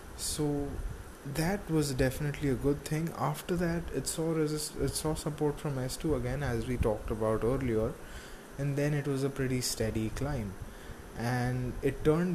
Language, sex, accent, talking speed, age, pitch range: English, male, Indian, 165 wpm, 20-39, 105-140 Hz